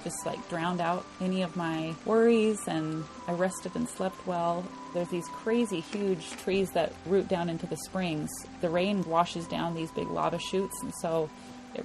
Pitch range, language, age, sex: 160-190 Hz, English, 30-49, female